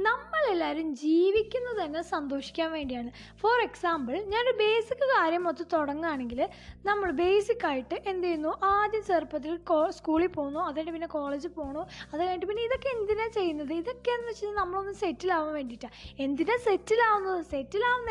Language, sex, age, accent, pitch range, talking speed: Malayalam, female, 20-39, native, 310-405 Hz, 135 wpm